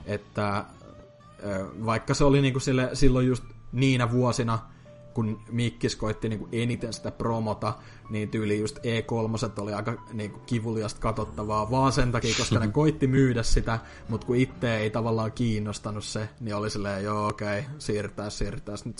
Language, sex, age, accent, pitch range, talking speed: Finnish, male, 20-39, native, 105-130 Hz, 160 wpm